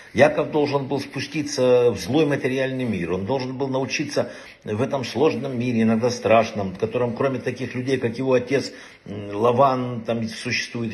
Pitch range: 115-145 Hz